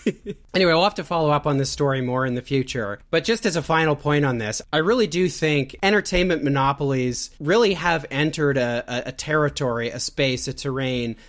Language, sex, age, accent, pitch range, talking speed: English, male, 30-49, American, 130-155 Hz, 195 wpm